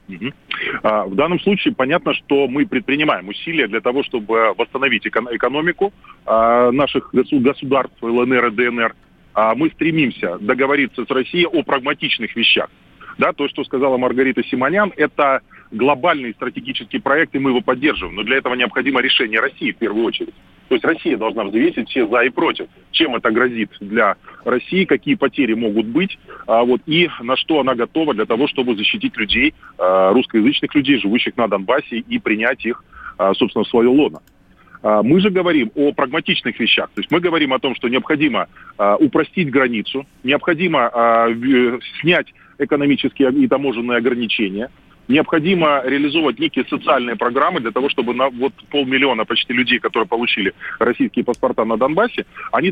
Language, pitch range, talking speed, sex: Russian, 120-165 Hz, 150 wpm, male